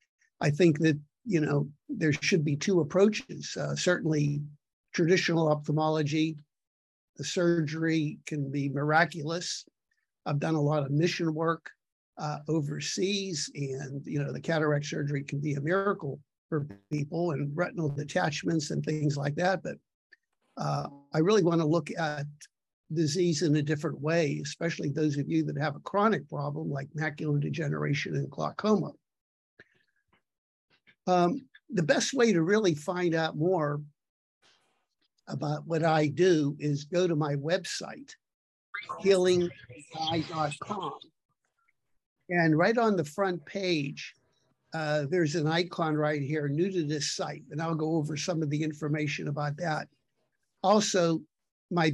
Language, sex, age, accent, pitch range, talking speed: English, male, 50-69, American, 150-175 Hz, 140 wpm